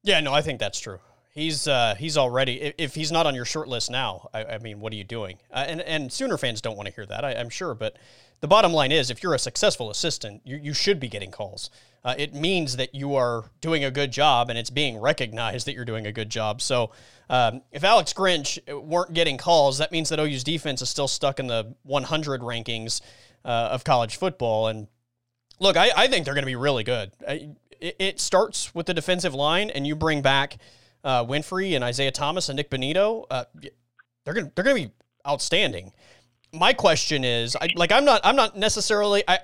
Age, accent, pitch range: 30-49, American, 120-170 Hz